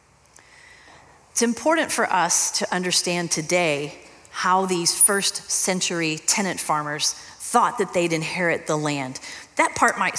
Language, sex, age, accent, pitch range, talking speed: English, female, 40-59, American, 170-220 Hz, 130 wpm